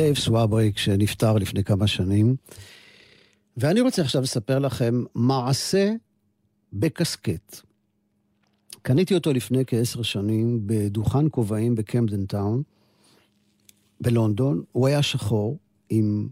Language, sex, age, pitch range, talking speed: Hebrew, male, 50-69, 110-145 Hz, 100 wpm